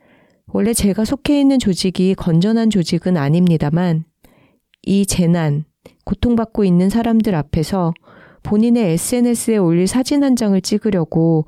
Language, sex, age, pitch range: Korean, female, 40-59, 170-225 Hz